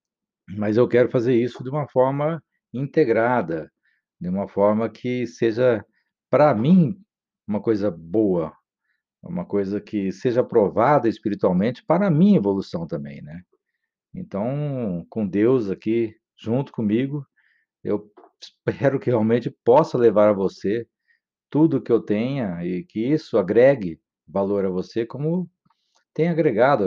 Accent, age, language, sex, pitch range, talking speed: Brazilian, 50-69, Portuguese, male, 95-130 Hz, 130 wpm